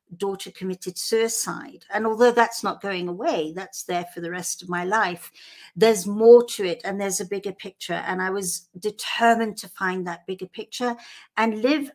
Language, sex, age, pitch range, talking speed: English, female, 60-79, 185-230 Hz, 185 wpm